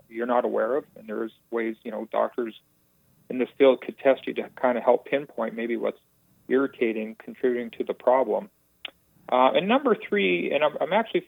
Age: 40-59